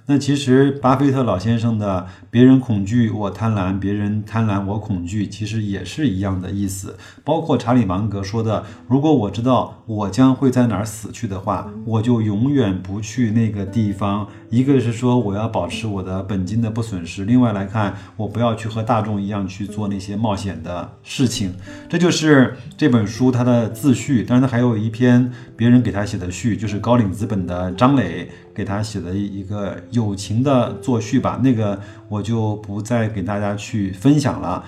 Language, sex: Chinese, male